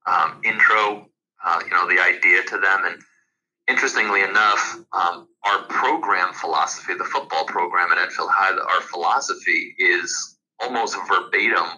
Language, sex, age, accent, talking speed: English, male, 30-49, American, 140 wpm